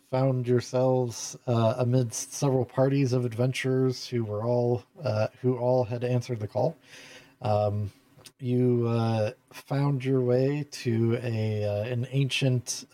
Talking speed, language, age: 135 wpm, English, 40-59